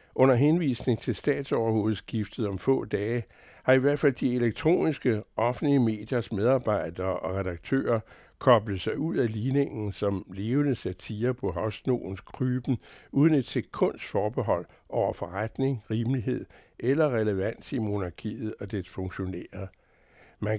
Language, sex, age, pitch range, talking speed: Danish, male, 60-79, 100-130 Hz, 130 wpm